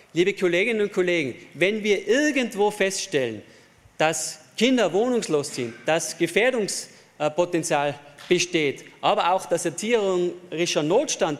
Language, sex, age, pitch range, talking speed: German, male, 30-49, 155-200 Hz, 105 wpm